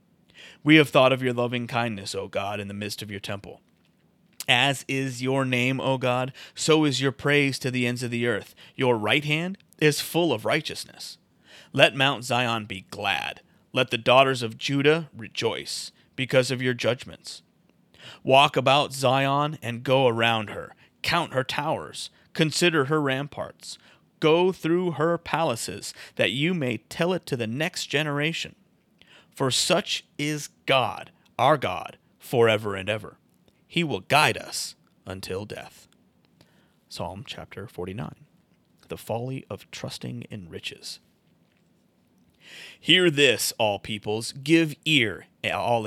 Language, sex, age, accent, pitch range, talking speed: English, male, 30-49, American, 115-150 Hz, 145 wpm